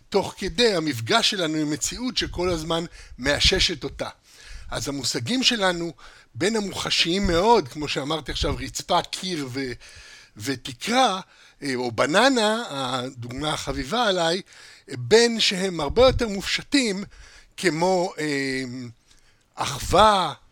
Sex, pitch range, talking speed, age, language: male, 145-190 Hz, 100 wpm, 60-79, Hebrew